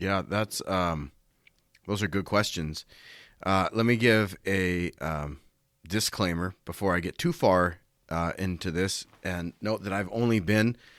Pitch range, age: 85-105 Hz, 30-49